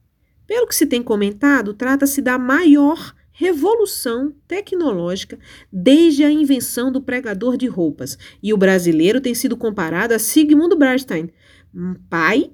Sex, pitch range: female, 195-300 Hz